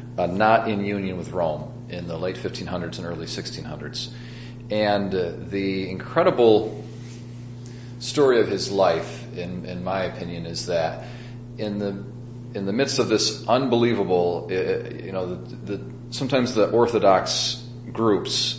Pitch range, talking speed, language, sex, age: 95-120 Hz, 140 wpm, English, male, 40-59